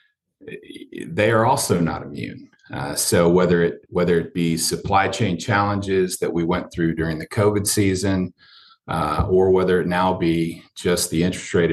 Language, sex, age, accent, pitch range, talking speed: English, male, 40-59, American, 80-100 Hz, 170 wpm